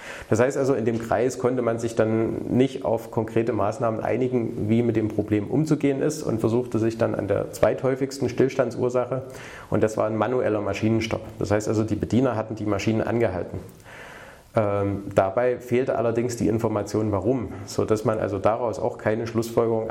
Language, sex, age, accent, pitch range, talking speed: German, male, 30-49, German, 110-130 Hz, 175 wpm